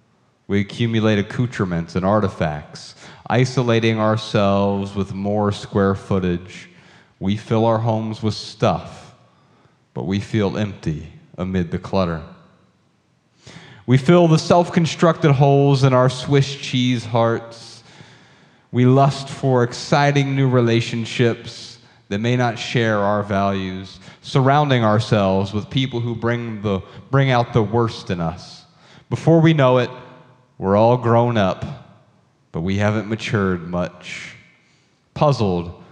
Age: 30-49